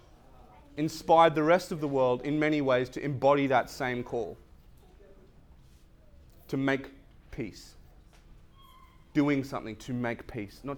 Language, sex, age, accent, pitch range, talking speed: English, male, 30-49, Australian, 100-125 Hz, 130 wpm